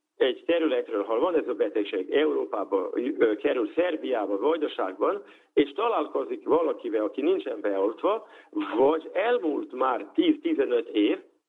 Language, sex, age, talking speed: Hungarian, male, 50-69, 115 wpm